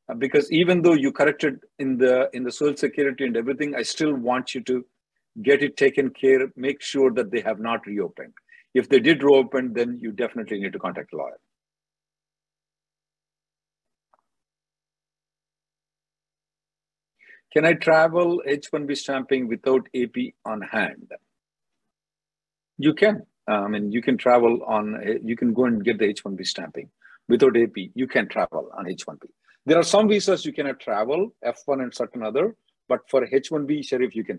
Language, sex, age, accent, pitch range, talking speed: English, male, 50-69, Indian, 120-155 Hz, 170 wpm